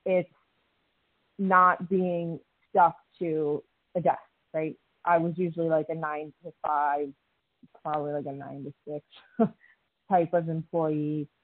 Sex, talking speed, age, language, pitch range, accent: female, 130 wpm, 20-39, English, 155-185 Hz, American